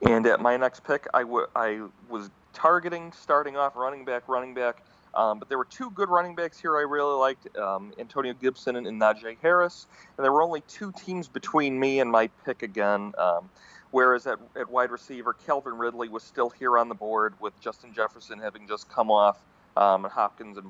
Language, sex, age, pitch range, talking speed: English, male, 40-59, 115-150 Hz, 210 wpm